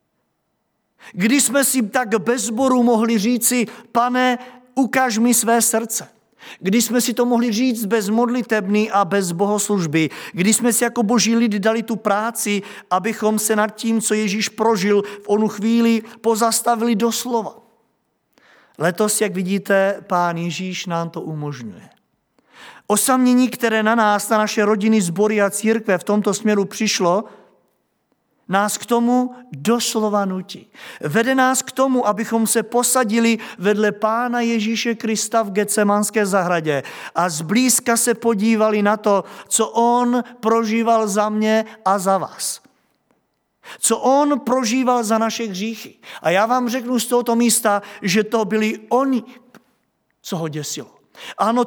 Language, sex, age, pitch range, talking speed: Czech, male, 50-69, 205-235 Hz, 140 wpm